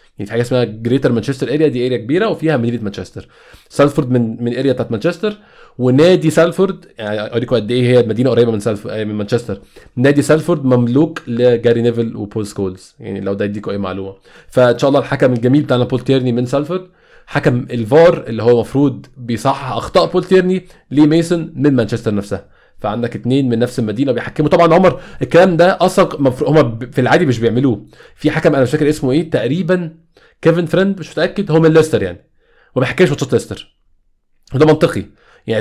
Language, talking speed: Arabic, 175 wpm